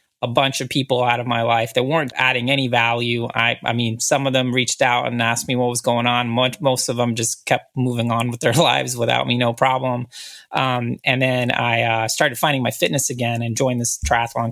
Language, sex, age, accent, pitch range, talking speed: English, male, 30-49, American, 120-135 Hz, 235 wpm